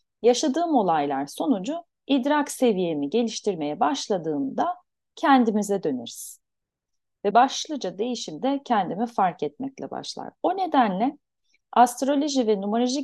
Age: 40-59